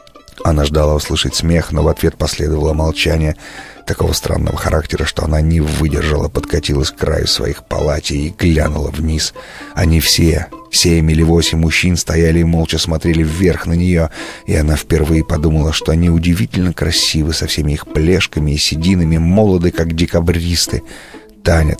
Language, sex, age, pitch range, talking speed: Russian, male, 30-49, 75-85 Hz, 150 wpm